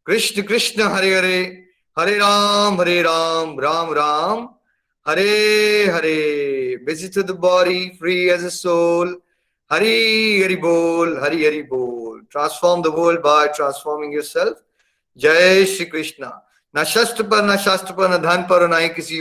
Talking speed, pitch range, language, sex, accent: 145 wpm, 160-190 Hz, Hindi, male, native